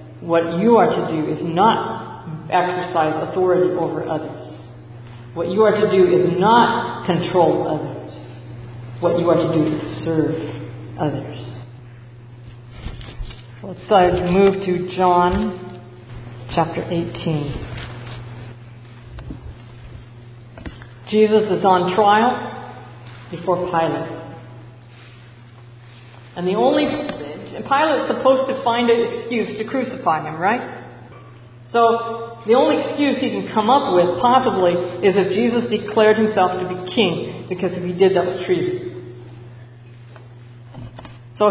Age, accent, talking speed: 50-69, American, 115 wpm